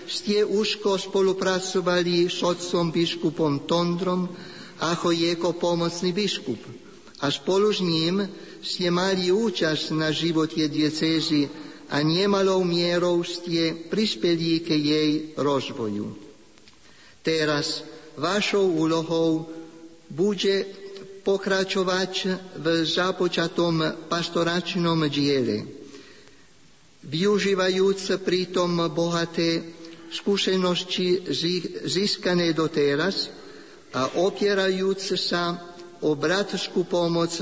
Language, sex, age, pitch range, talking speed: Slovak, male, 50-69, 160-185 Hz, 80 wpm